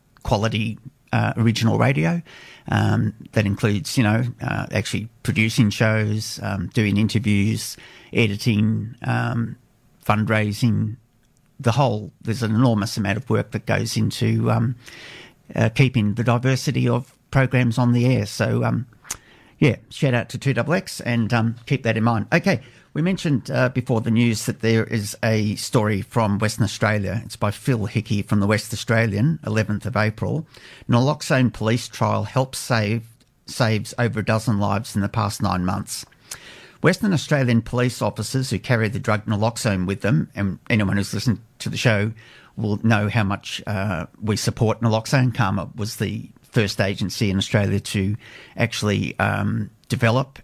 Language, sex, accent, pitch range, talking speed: English, male, Australian, 105-125 Hz, 155 wpm